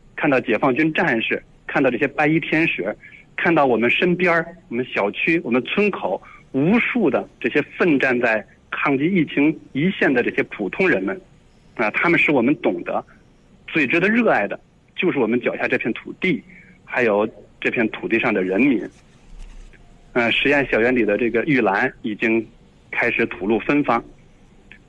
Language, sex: Chinese, male